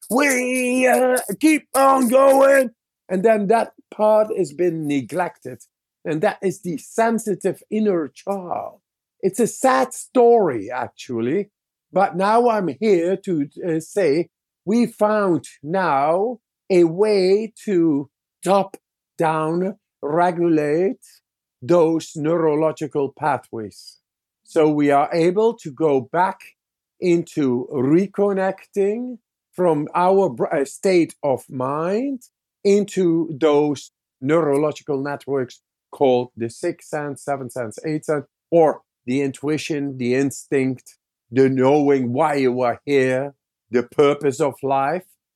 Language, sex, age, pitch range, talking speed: English, male, 50-69, 145-205 Hz, 110 wpm